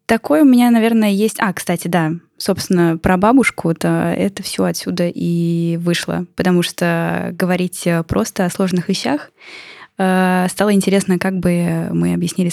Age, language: 10-29, Russian